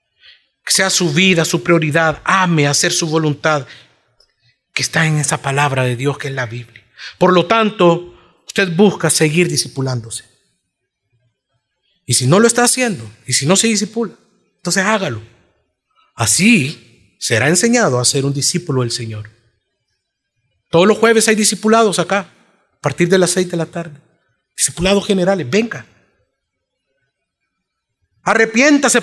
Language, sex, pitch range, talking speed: Spanish, male, 145-230 Hz, 140 wpm